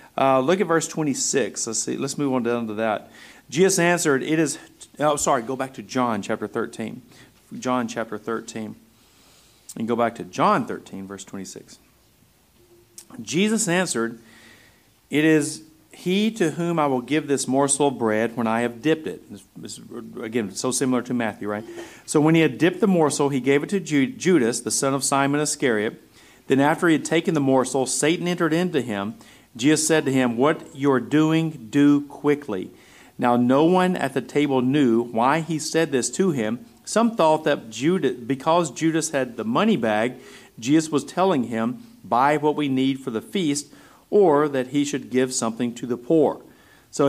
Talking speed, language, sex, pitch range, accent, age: 180 wpm, English, male, 125-170 Hz, American, 40-59